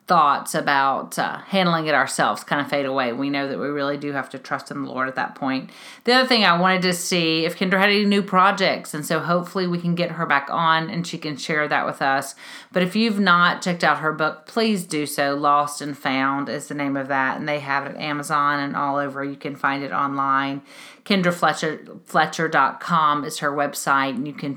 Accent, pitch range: American, 145-175 Hz